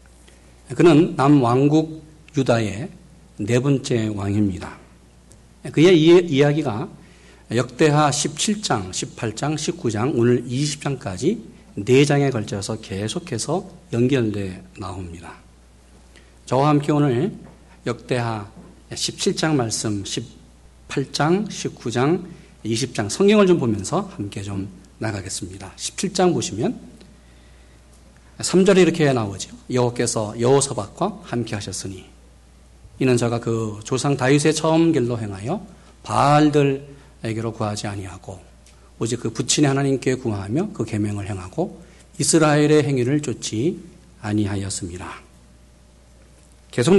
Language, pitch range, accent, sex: Korean, 95-150 Hz, native, male